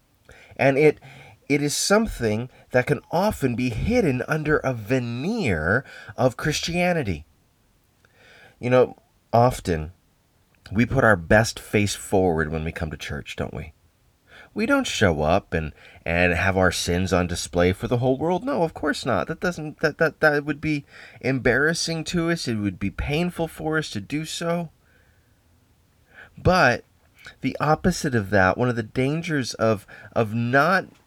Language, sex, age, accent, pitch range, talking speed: English, male, 30-49, American, 100-155 Hz, 155 wpm